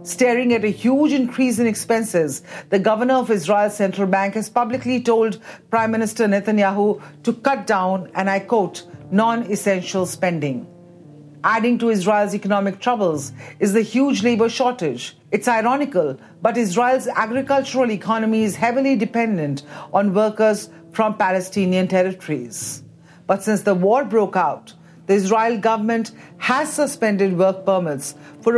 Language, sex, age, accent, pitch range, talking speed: English, female, 50-69, Indian, 185-235 Hz, 135 wpm